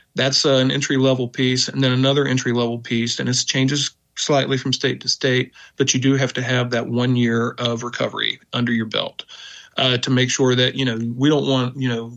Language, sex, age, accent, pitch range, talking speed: English, male, 40-59, American, 115-135 Hz, 225 wpm